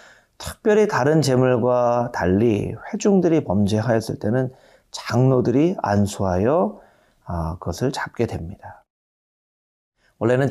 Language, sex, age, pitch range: Korean, male, 40-59, 105-150 Hz